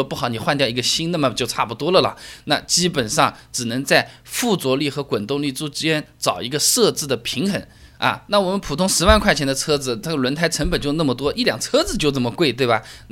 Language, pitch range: Chinese, 135-195 Hz